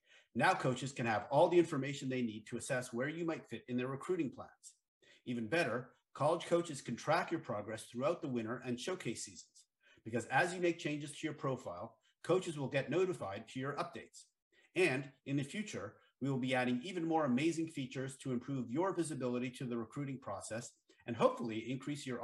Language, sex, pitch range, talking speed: English, male, 125-165 Hz, 195 wpm